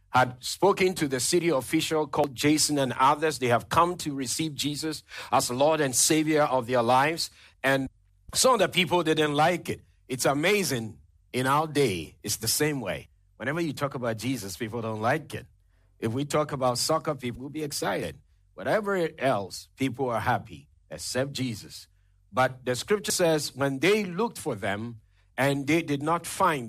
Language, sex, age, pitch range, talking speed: English, male, 50-69, 110-160 Hz, 180 wpm